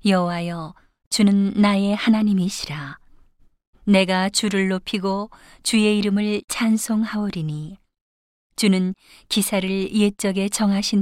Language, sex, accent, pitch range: Korean, female, native, 180-205 Hz